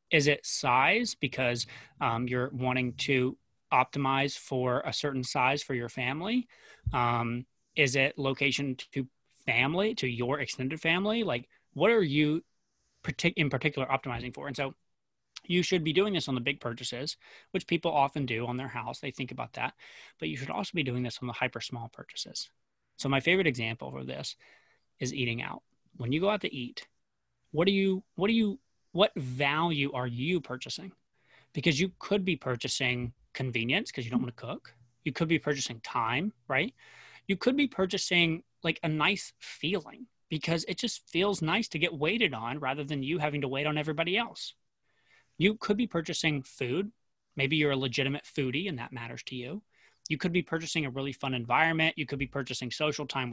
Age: 30-49